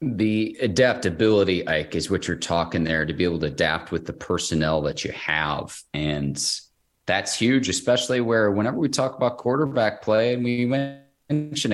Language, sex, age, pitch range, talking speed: English, male, 30-49, 85-115 Hz, 170 wpm